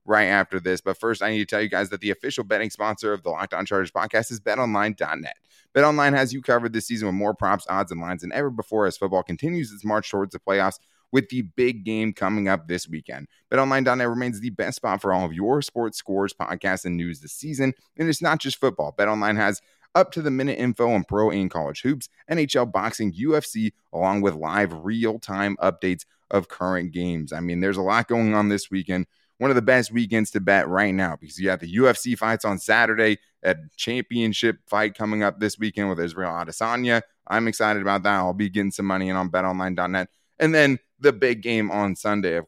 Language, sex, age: English, male, 20-39